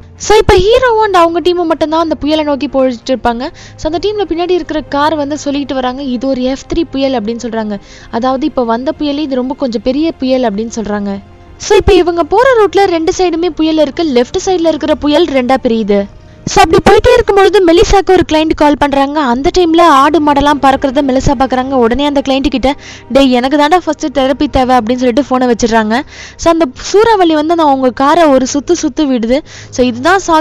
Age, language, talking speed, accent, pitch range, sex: 20-39, Tamil, 185 wpm, native, 240-305 Hz, female